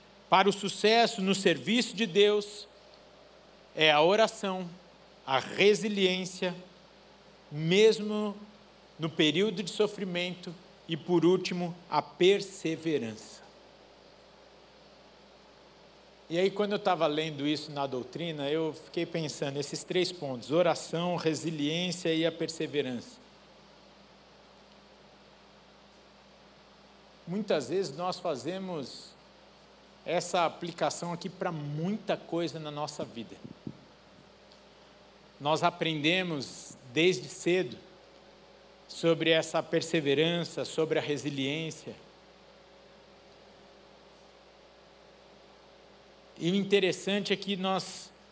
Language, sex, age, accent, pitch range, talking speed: Portuguese, male, 60-79, Brazilian, 155-190 Hz, 90 wpm